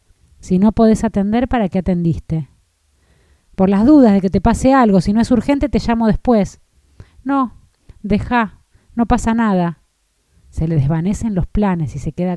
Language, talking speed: Spanish, 170 wpm